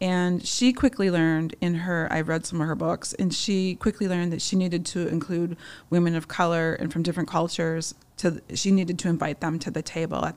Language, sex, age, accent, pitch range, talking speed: English, female, 30-49, American, 160-180 Hz, 220 wpm